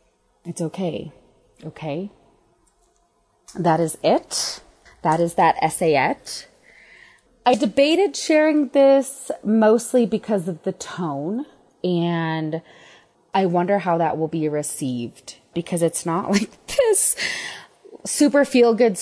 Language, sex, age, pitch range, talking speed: English, female, 20-39, 160-210 Hz, 105 wpm